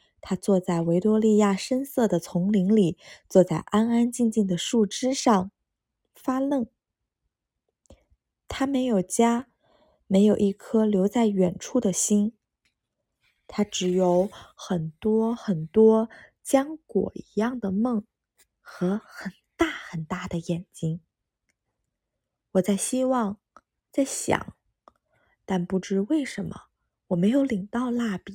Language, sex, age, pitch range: Chinese, female, 20-39, 185-235 Hz